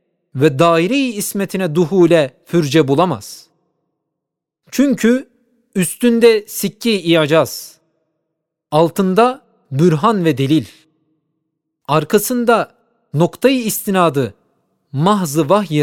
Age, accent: 40-59, native